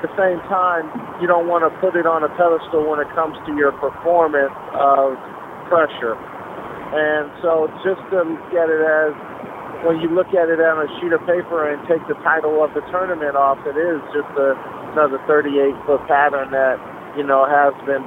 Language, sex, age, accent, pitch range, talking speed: English, male, 50-69, American, 135-155 Hz, 195 wpm